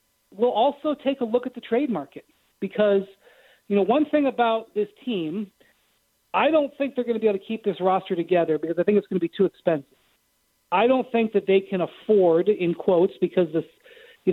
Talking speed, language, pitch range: 215 wpm, English, 180-215 Hz